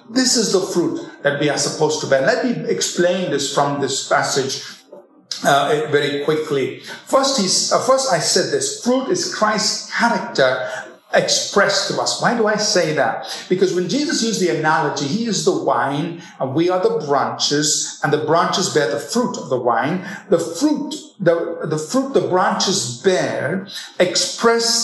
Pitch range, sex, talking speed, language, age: 145-230 Hz, male, 175 wpm, English, 50-69